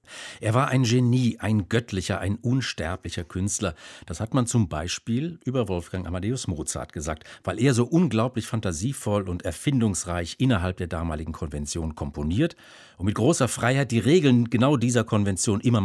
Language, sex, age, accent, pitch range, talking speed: German, male, 50-69, German, 90-130 Hz, 155 wpm